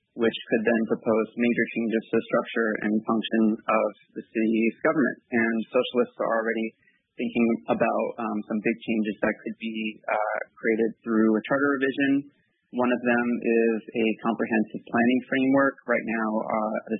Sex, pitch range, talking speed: male, 110-120 Hz, 160 wpm